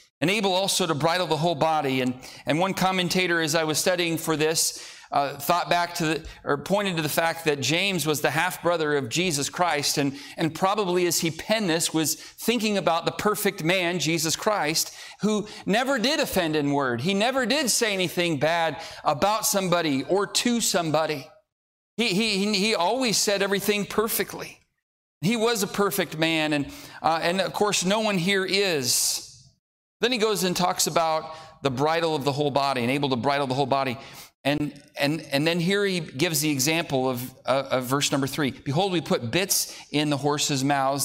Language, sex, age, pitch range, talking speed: English, male, 40-59, 135-185 Hz, 190 wpm